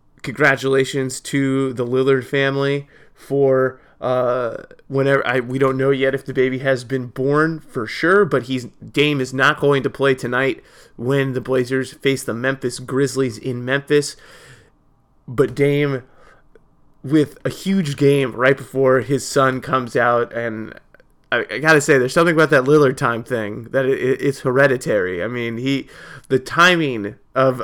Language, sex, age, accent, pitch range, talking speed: English, male, 20-39, American, 130-140 Hz, 160 wpm